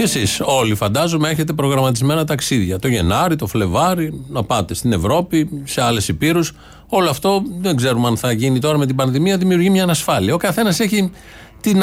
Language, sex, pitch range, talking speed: Greek, male, 120-160 Hz, 180 wpm